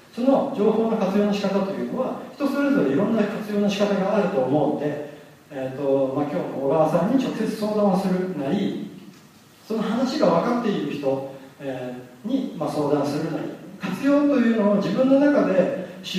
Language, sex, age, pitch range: Japanese, male, 40-59, 145-245 Hz